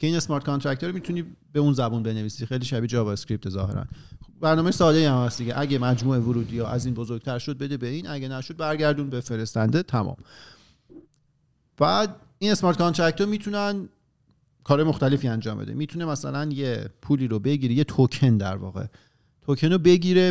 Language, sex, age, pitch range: Persian, male, 40-59, 120-155 Hz